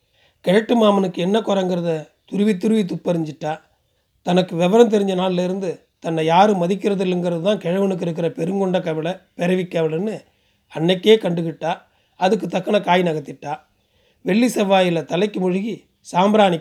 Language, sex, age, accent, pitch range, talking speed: Tamil, male, 30-49, native, 165-200 Hz, 115 wpm